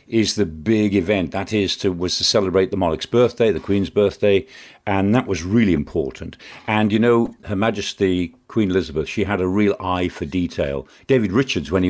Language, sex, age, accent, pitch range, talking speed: English, male, 50-69, British, 90-115 Hz, 195 wpm